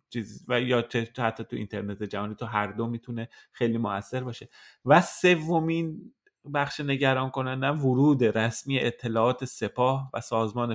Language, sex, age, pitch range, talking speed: Persian, male, 30-49, 115-145 Hz, 140 wpm